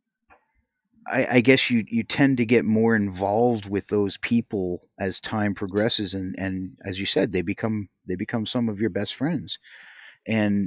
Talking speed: 175 wpm